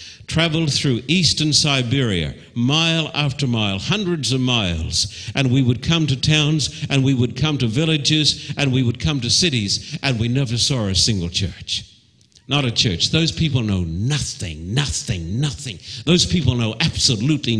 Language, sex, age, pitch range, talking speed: English, male, 60-79, 115-150 Hz, 165 wpm